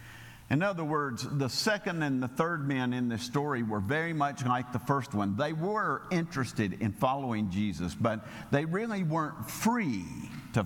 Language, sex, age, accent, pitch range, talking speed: English, male, 50-69, American, 130-190 Hz, 175 wpm